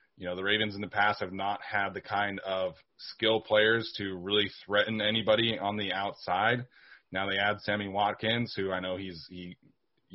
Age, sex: 20-39, male